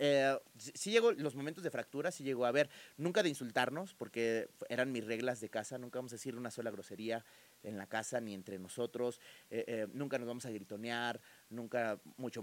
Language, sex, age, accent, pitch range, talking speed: Spanish, male, 30-49, Mexican, 115-140 Hz, 210 wpm